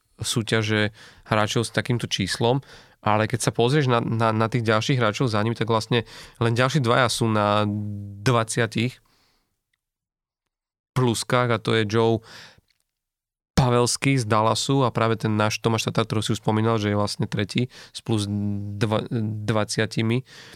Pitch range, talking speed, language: 110-125 Hz, 145 wpm, Slovak